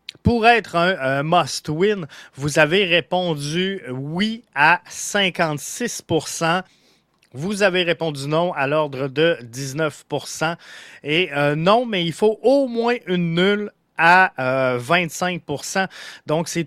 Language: French